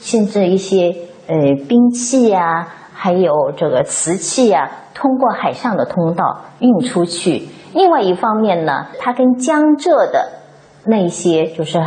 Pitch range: 175-255 Hz